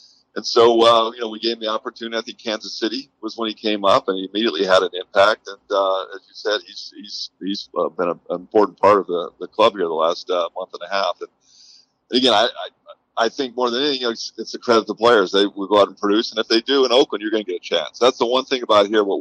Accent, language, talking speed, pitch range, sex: American, English, 295 wpm, 95-130 Hz, male